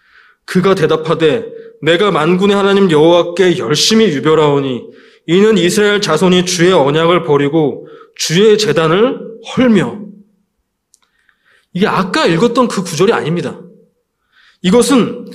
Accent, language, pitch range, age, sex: native, Korean, 150-230 Hz, 20-39, male